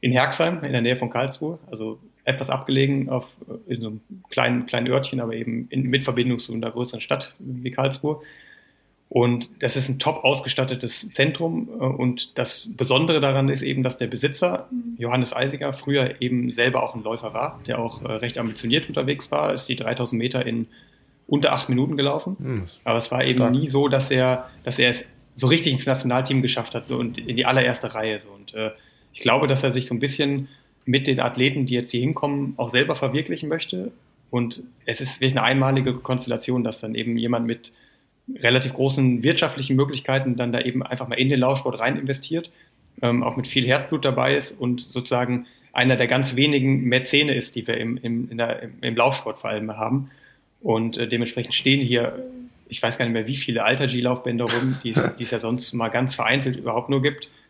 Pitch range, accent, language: 120-135 Hz, German, German